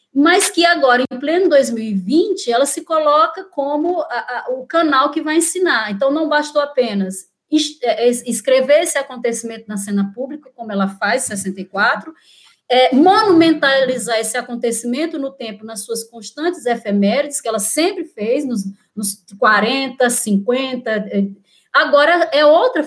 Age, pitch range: 20-39, 225-300 Hz